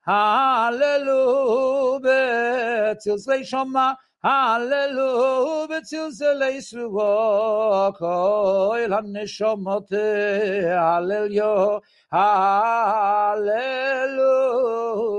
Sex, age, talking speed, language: male, 60-79, 65 wpm, English